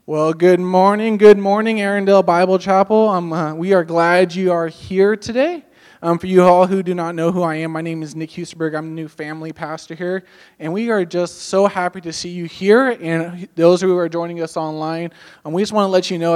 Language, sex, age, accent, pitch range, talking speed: English, male, 20-39, American, 160-195 Hz, 240 wpm